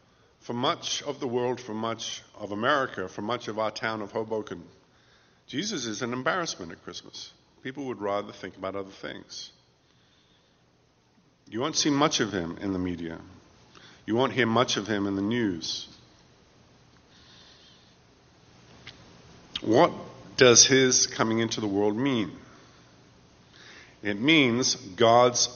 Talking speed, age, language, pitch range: 135 wpm, 50-69, English, 70-115 Hz